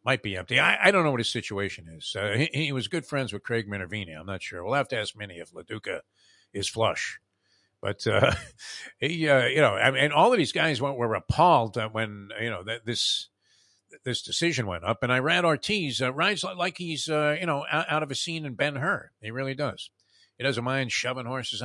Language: English